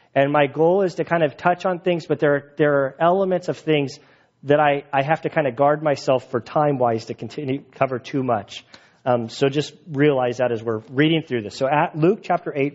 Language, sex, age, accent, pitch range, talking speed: English, male, 40-59, American, 130-170 Hz, 230 wpm